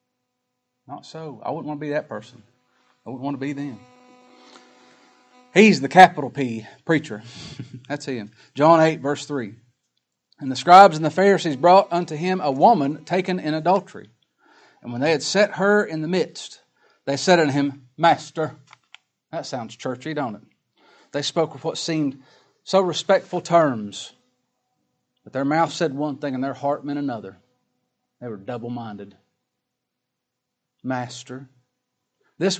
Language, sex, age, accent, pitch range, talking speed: English, male, 40-59, American, 125-160 Hz, 155 wpm